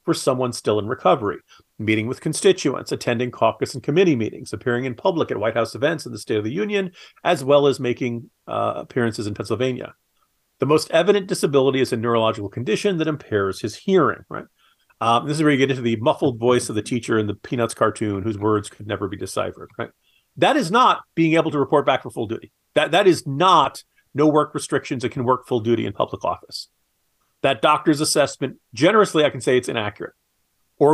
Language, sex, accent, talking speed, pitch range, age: English, male, American, 210 wpm, 115-150 Hz, 40-59